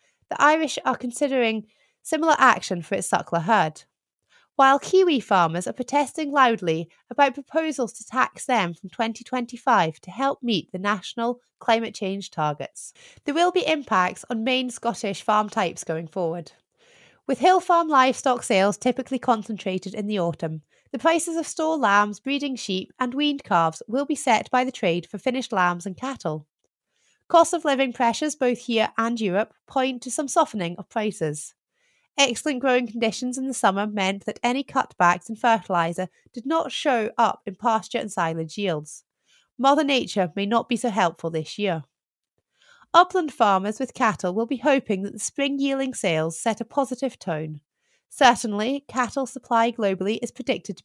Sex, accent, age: female, British, 30-49